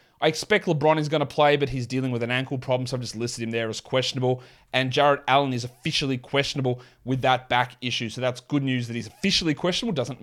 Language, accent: English, Australian